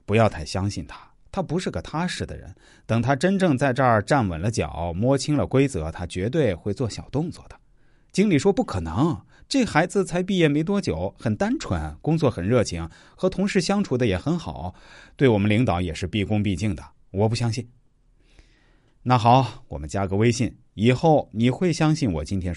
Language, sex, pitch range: Chinese, male, 95-145 Hz